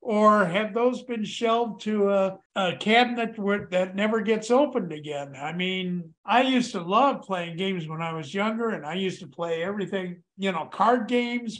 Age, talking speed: 50-69, 185 wpm